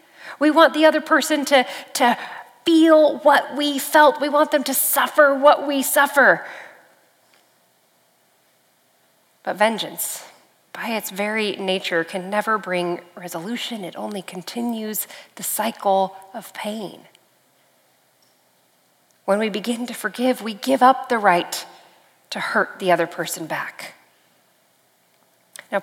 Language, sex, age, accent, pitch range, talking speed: English, female, 40-59, American, 180-235 Hz, 125 wpm